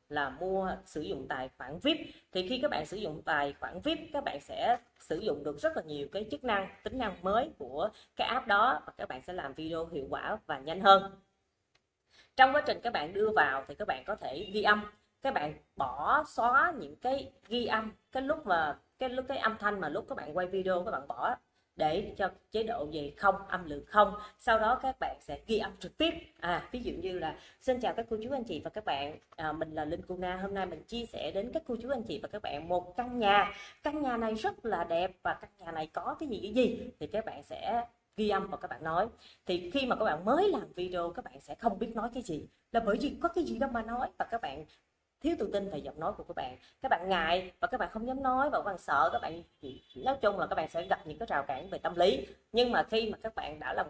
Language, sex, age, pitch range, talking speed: Vietnamese, female, 20-39, 180-255 Hz, 265 wpm